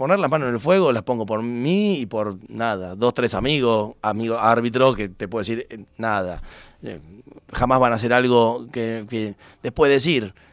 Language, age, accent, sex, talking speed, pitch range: Spanish, 30-49, Argentinian, male, 195 wpm, 110-135 Hz